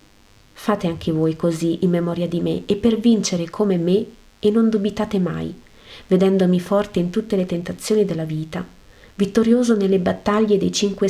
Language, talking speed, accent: Italian, 160 wpm, native